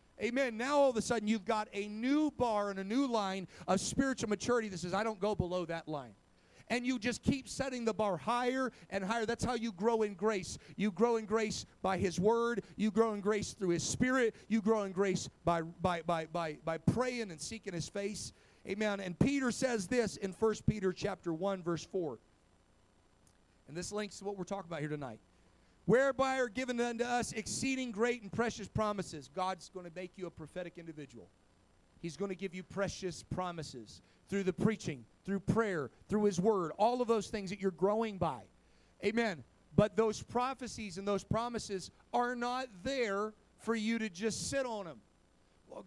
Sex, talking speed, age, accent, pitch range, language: male, 200 wpm, 40-59, American, 175-230 Hz, English